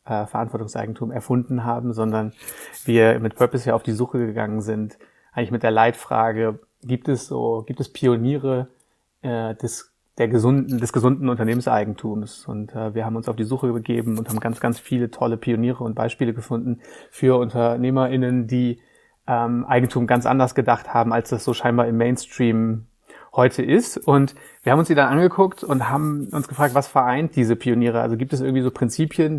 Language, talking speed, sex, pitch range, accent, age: German, 180 wpm, male, 115-135 Hz, German, 30-49